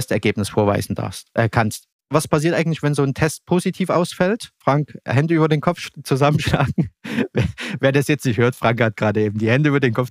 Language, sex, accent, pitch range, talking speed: German, male, German, 115-140 Hz, 215 wpm